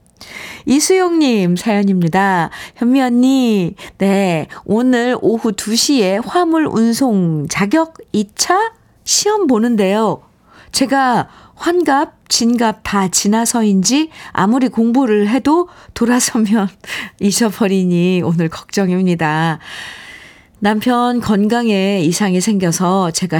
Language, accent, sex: Korean, native, female